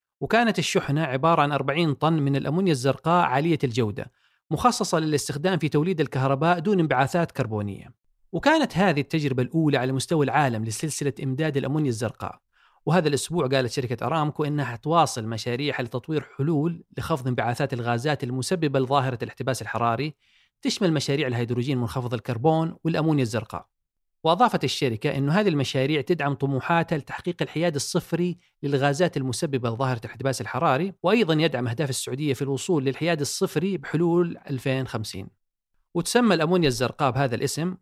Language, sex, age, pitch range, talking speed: Arabic, male, 40-59, 130-170 Hz, 135 wpm